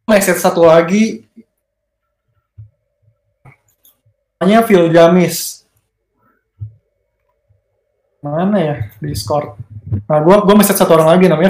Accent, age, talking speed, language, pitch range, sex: native, 20-39, 85 wpm, Indonesian, 150-190 Hz, male